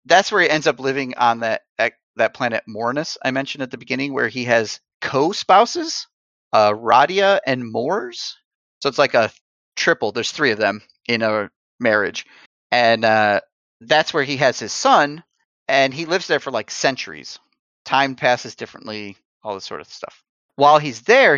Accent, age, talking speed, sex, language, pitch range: American, 30-49, 175 wpm, male, English, 110-145 Hz